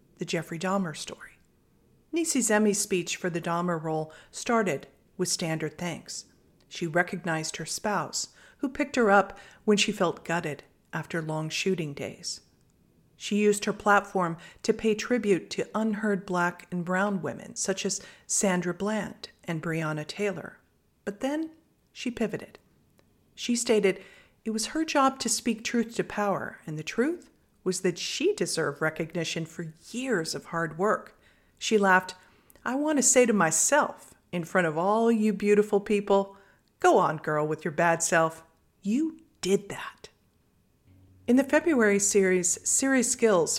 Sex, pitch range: female, 165-220 Hz